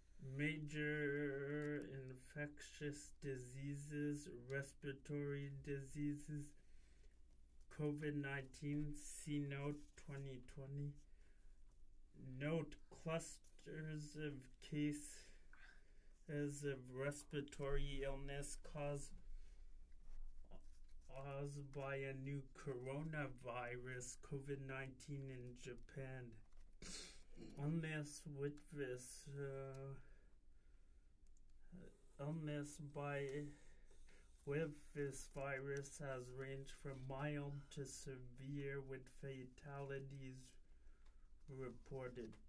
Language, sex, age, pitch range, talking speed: English, male, 30-49, 130-145 Hz, 60 wpm